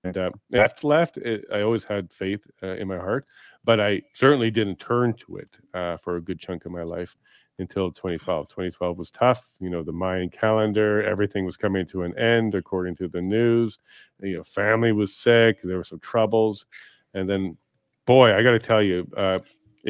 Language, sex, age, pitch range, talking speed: English, male, 40-59, 90-115 Hz, 200 wpm